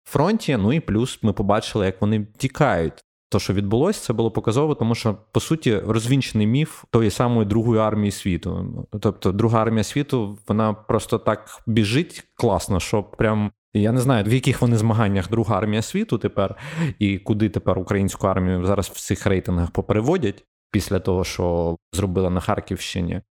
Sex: male